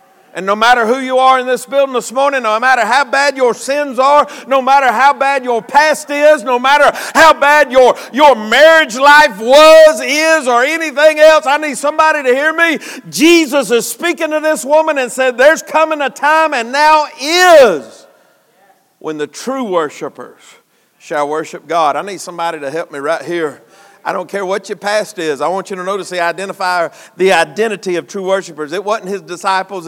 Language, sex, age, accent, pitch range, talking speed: English, male, 50-69, American, 215-305 Hz, 195 wpm